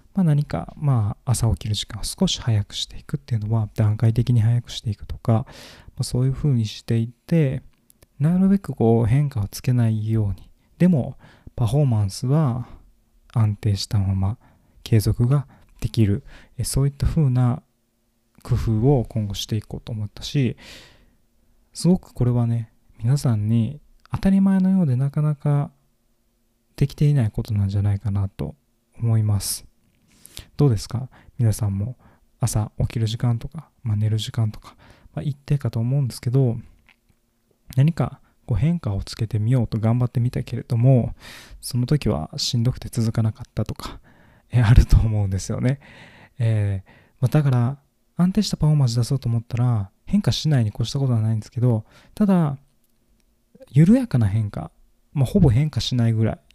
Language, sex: Japanese, male